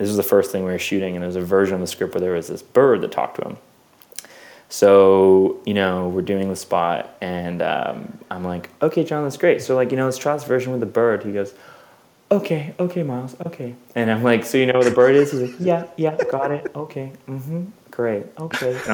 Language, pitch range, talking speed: English, 95-150 Hz, 245 wpm